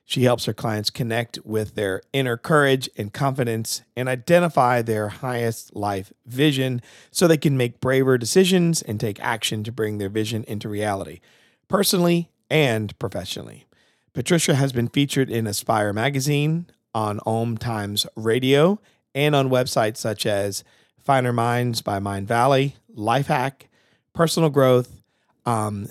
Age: 40-59